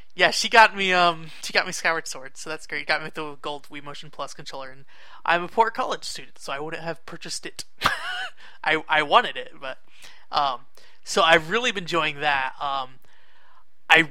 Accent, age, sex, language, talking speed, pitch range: American, 20-39, male, English, 200 wpm, 140-180 Hz